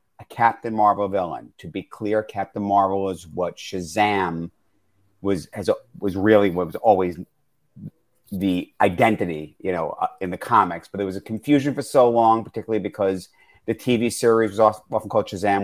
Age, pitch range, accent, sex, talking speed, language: 50-69, 100-130 Hz, American, male, 170 wpm, English